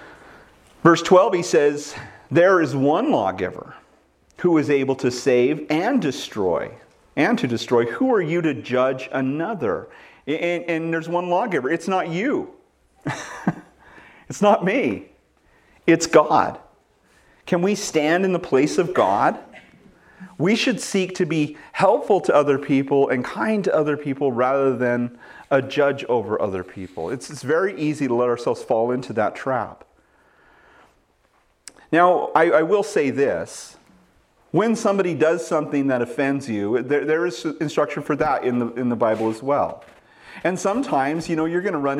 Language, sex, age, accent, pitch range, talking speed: English, male, 40-59, American, 125-170 Hz, 160 wpm